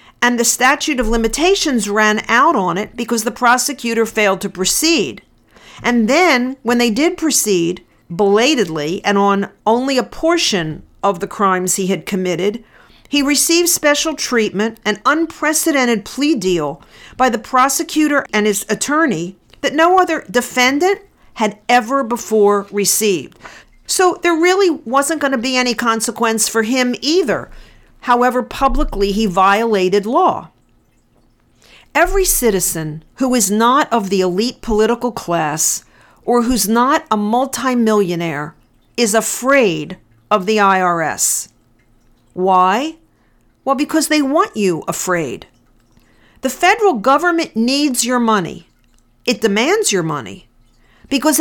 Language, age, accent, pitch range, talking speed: English, 50-69, American, 195-280 Hz, 125 wpm